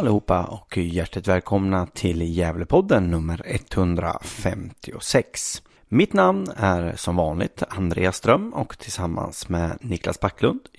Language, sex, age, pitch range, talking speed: Swedish, male, 30-49, 90-150 Hz, 110 wpm